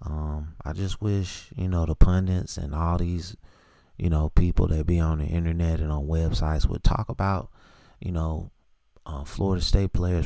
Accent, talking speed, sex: American, 180 wpm, male